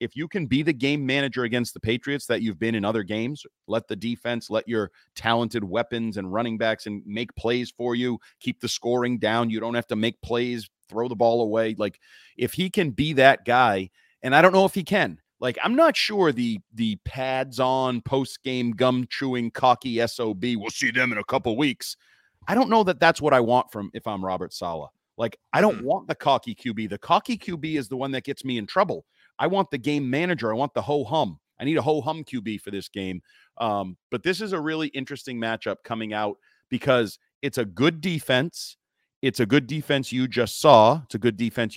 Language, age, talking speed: English, 30-49, 225 wpm